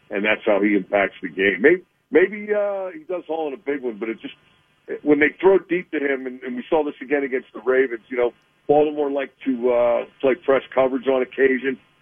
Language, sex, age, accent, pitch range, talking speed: English, male, 50-69, American, 115-140 Hz, 230 wpm